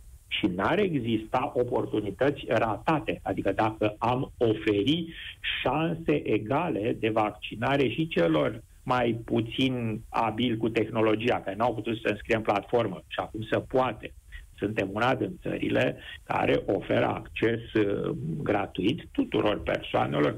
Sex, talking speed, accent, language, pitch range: male, 125 wpm, native, Romanian, 105-160 Hz